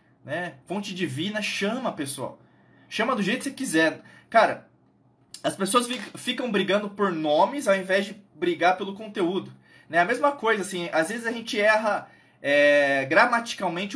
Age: 20-39